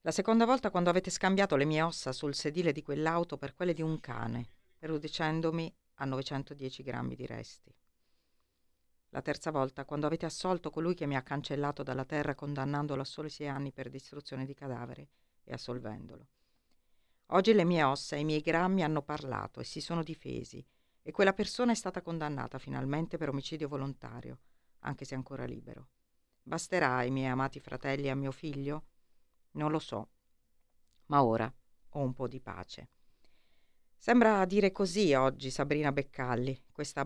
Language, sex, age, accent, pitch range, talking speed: Italian, female, 50-69, native, 135-160 Hz, 165 wpm